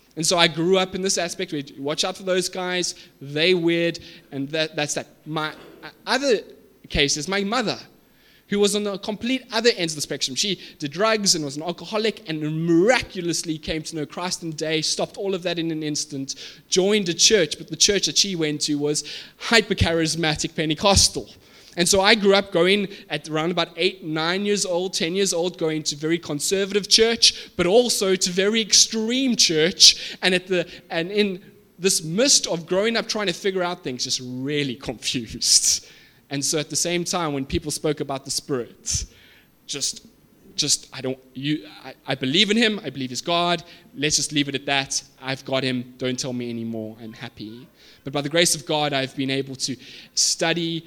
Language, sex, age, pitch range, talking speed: English, male, 20-39, 135-185 Hz, 205 wpm